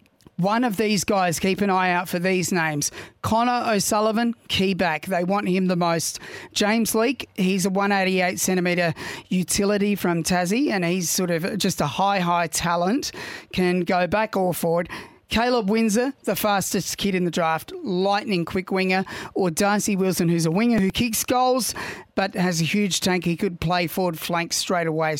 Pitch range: 175-200 Hz